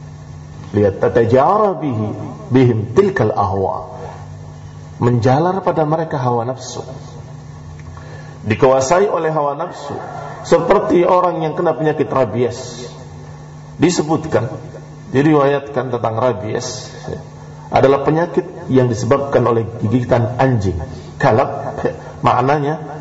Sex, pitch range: male, 115-155 Hz